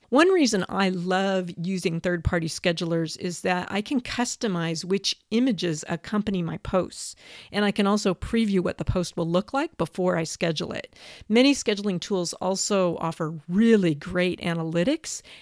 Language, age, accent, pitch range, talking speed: English, 40-59, American, 170-205 Hz, 155 wpm